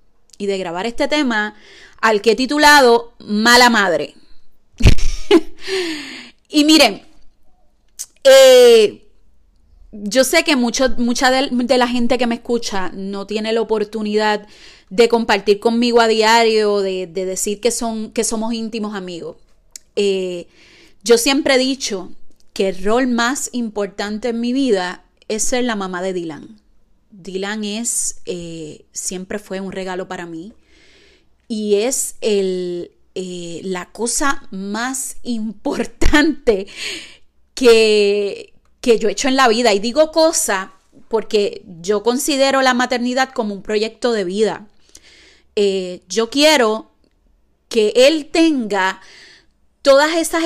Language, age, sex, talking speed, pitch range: Spanish, 30-49, female, 125 wpm, 205-275 Hz